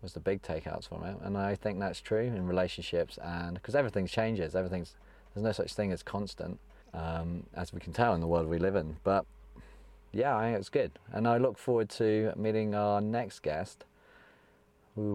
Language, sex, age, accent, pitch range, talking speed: English, male, 30-49, British, 80-105 Hz, 200 wpm